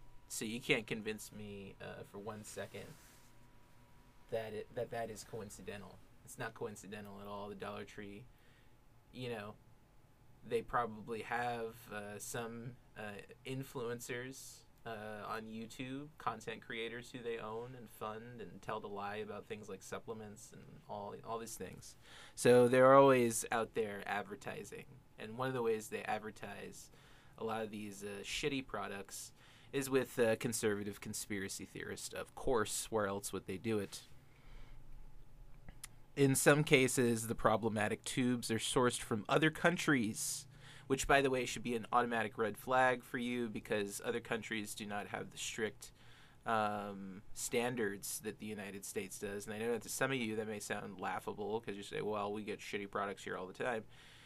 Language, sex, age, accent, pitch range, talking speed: English, male, 20-39, American, 110-130 Hz, 165 wpm